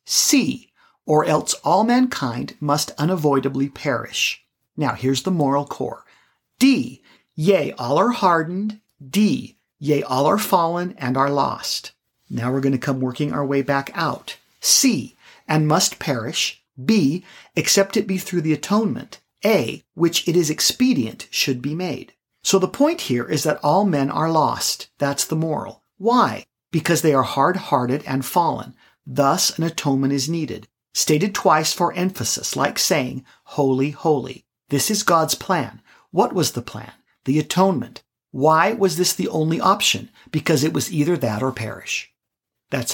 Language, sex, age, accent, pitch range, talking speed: English, male, 50-69, American, 140-190 Hz, 155 wpm